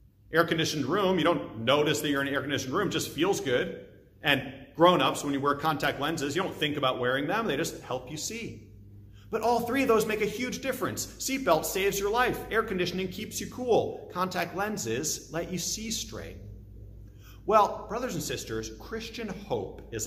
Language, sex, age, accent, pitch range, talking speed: English, male, 40-59, American, 110-180 Hz, 185 wpm